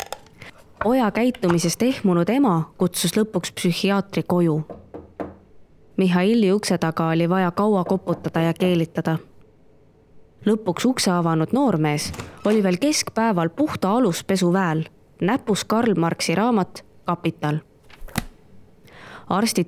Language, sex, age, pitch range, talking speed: English, female, 20-39, 170-220 Hz, 100 wpm